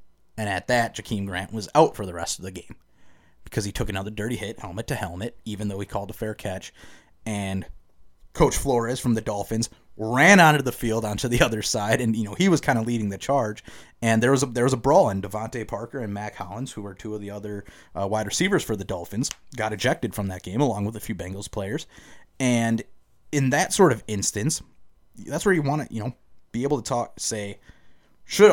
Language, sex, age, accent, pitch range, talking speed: English, male, 30-49, American, 100-125 Hz, 230 wpm